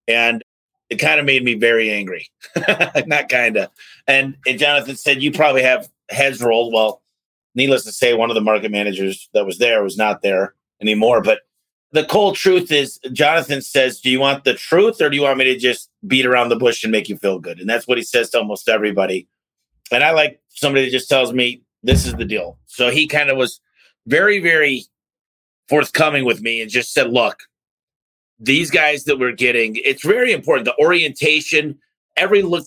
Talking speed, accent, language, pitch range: 200 wpm, American, English, 115-150 Hz